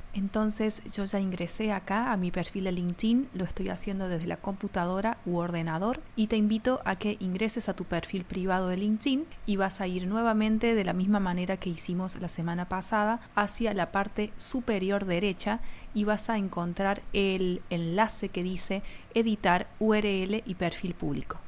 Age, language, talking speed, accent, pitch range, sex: 30-49, Spanish, 175 wpm, Venezuelan, 175-210 Hz, female